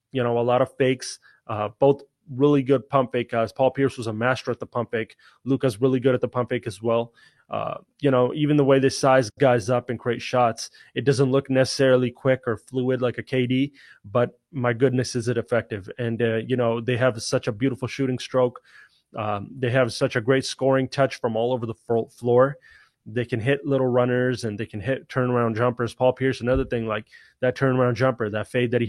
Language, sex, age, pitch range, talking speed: English, male, 20-39, 115-130 Hz, 220 wpm